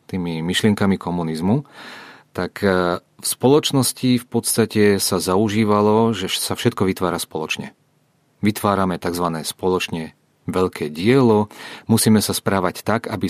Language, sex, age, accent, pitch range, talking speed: Czech, male, 40-59, Slovak, 90-115 Hz, 115 wpm